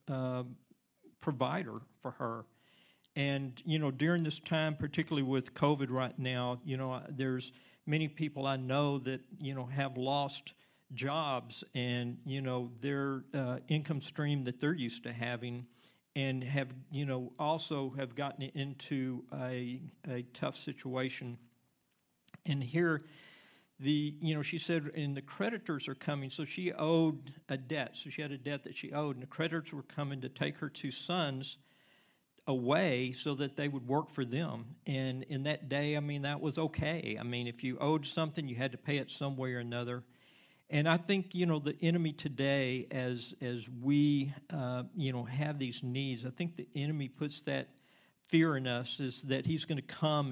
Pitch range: 130-150 Hz